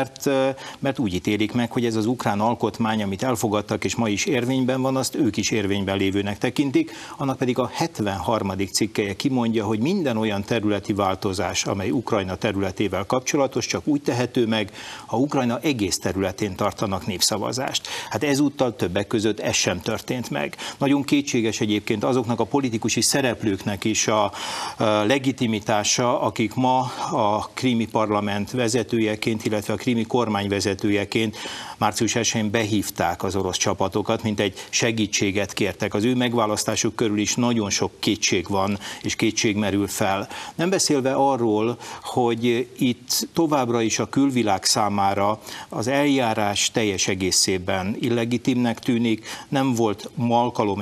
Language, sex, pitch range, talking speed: Hungarian, male, 105-125 Hz, 135 wpm